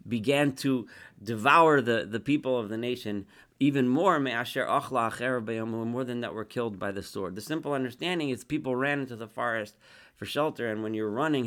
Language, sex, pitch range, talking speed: English, male, 105-130 Hz, 195 wpm